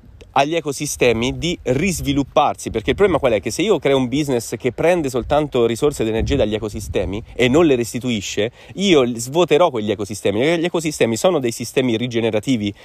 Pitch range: 110-145 Hz